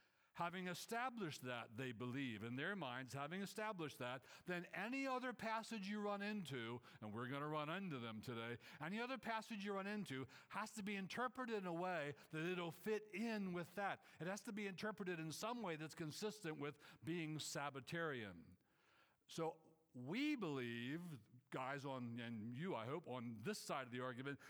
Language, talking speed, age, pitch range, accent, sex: English, 180 wpm, 60-79, 135-195 Hz, American, male